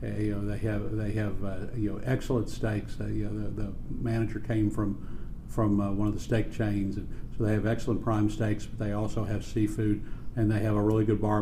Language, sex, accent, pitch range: English, male, American, 105-115 Hz